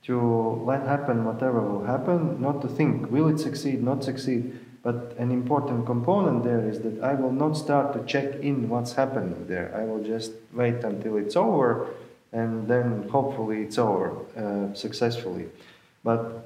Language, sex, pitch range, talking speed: English, male, 110-145 Hz, 170 wpm